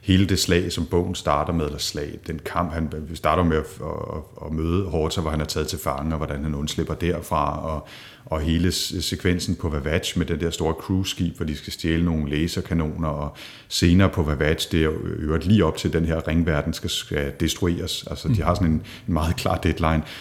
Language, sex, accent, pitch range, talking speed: Danish, male, native, 80-95 Hz, 215 wpm